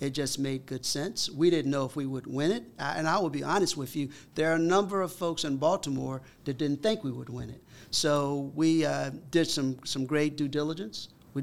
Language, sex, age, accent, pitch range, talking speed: English, male, 50-69, American, 135-155 Hz, 235 wpm